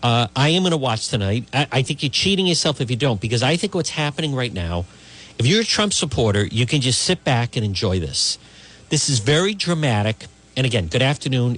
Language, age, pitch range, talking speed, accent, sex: English, 50-69, 95-160 Hz, 230 wpm, American, male